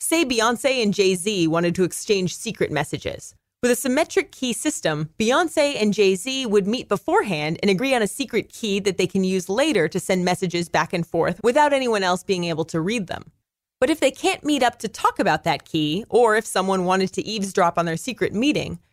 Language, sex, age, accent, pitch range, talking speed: English, female, 30-49, American, 180-255 Hz, 210 wpm